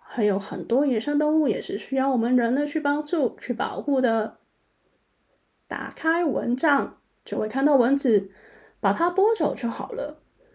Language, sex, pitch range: Chinese, female, 225-290 Hz